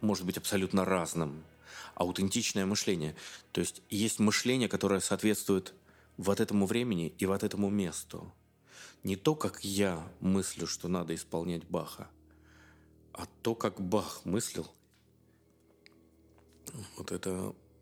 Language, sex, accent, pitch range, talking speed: Russian, male, native, 80-100 Hz, 120 wpm